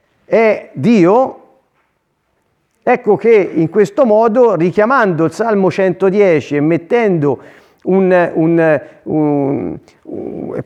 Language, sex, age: Italian, male, 50-69